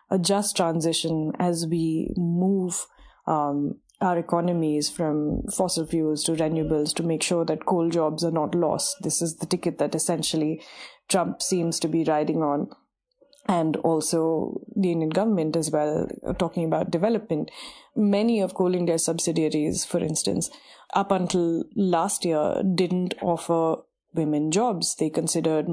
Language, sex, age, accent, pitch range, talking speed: English, female, 20-39, Indian, 155-185 Hz, 145 wpm